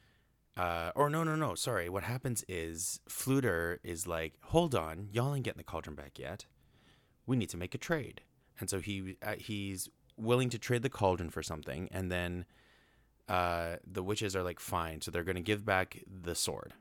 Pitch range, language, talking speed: 80-105 Hz, English, 195 wpm